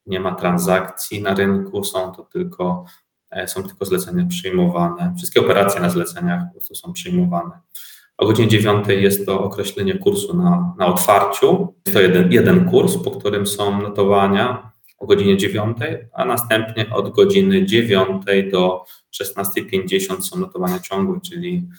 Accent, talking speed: native, 145 wpm